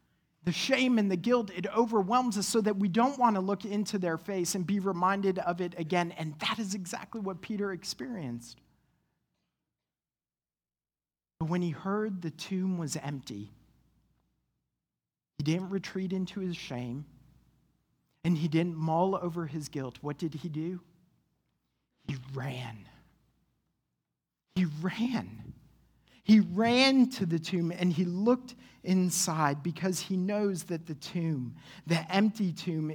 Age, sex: 40-59, male